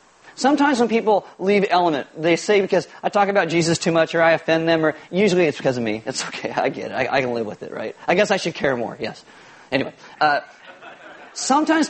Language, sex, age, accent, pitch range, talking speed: English, male, 30-49, American, 170-210 Hz, 230 wpm